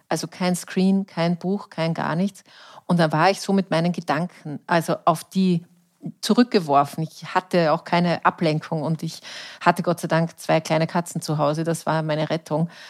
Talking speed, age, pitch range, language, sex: 185 wpm, 30-49, 160-190 Hz, German, female